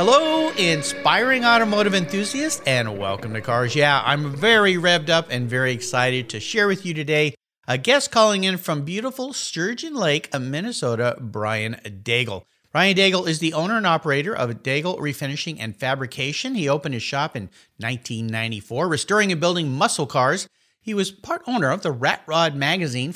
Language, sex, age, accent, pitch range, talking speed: English, male, 50-69, American, 120-180 Hz, 165 wpm